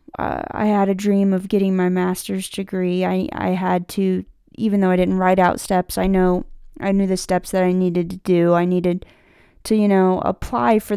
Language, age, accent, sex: English, 20-39, American, female